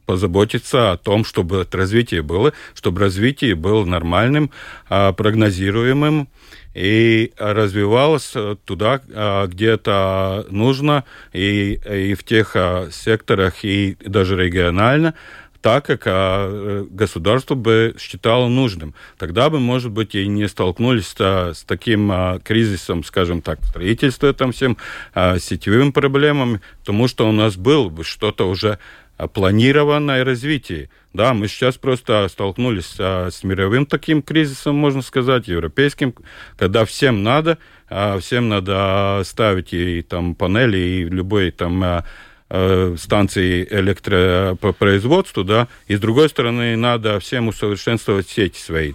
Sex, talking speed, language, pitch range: male, 115 wpm, Russian, 95-120 Hz